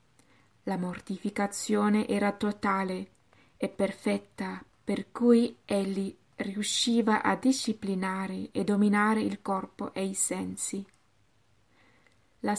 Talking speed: 95 wpm